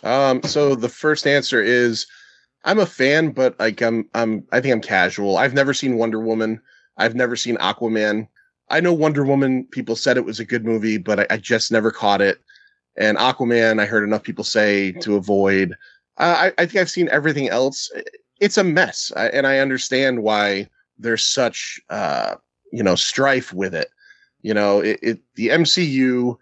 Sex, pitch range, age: male, 110-140 Hz, 30-49